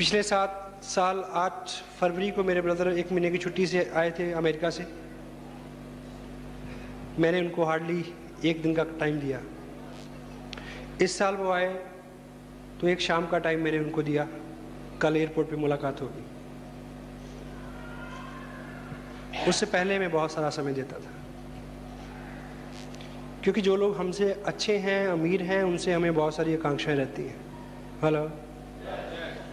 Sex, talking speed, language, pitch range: male, 135 wpm, Hindi, 135-185 Hz